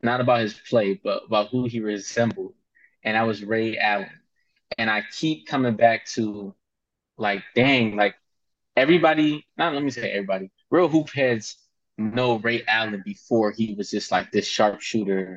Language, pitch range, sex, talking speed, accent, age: English, 110-135 Hz, male, 165 wpm, American, 20-39